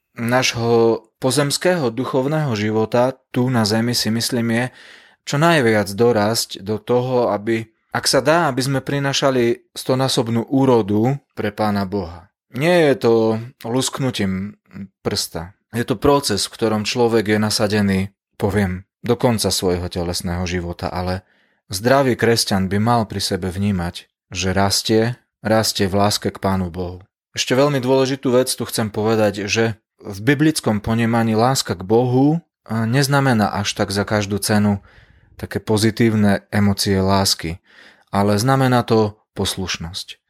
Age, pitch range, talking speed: 30-49, 100-120 Hz, 135 wpm